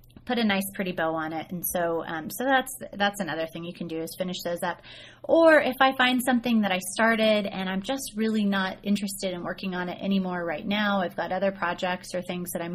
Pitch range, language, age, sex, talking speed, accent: 175-215 Hz, English, 30-49, female, 235 wpm, American